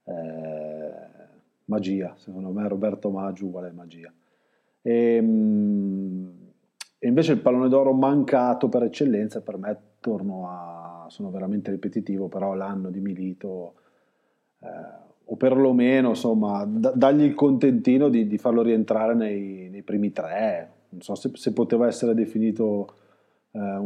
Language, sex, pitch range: Italian, male, 95-120 Hz